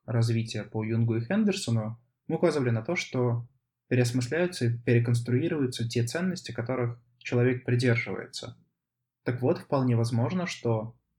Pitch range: 115-130 Hz